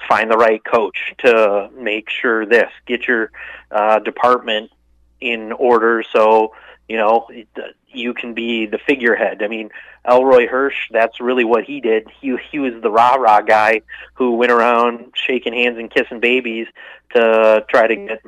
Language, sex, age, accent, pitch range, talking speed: English, male, 30-49, American, 110-125 Hz, 160 wpm